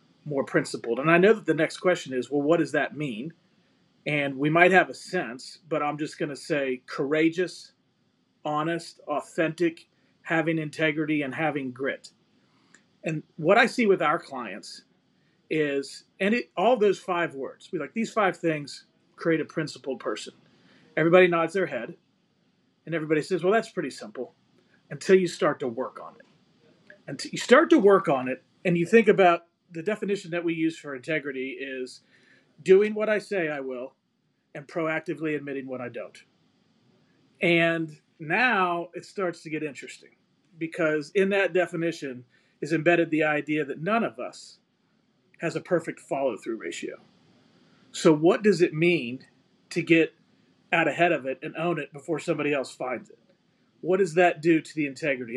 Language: English